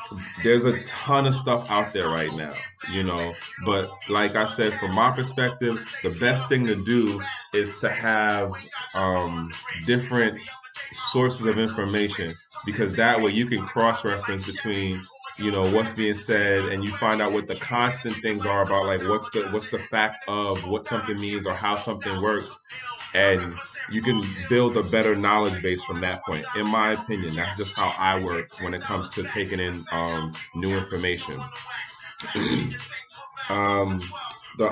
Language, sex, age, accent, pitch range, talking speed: English, male, 30-49, American, 95-115 Hz, 165 wpm